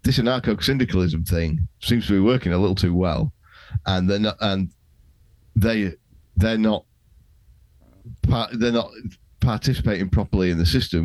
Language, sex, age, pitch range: English, male, 40-59, 85-105 Hz